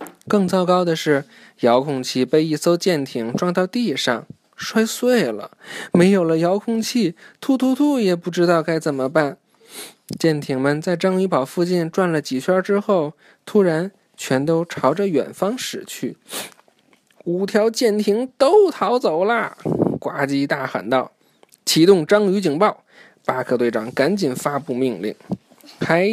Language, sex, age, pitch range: Chinese, male, 20-39, 130-195 Hz